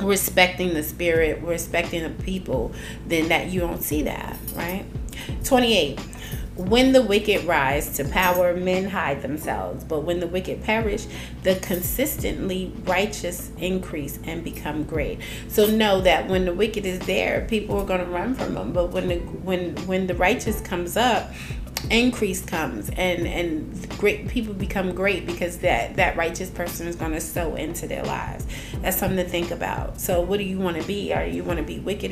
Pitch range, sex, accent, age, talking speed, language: 175-210 Hz, female, American, 30-49, 180 wpm, English